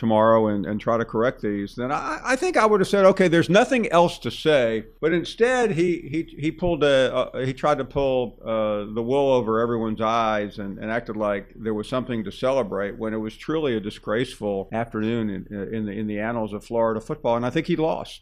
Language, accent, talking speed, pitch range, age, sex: English, American, 225 wpm, 110-135 Hz, 50-69, male